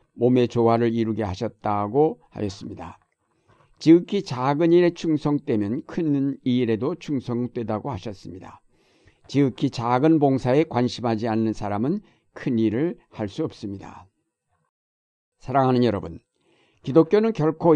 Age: 60-79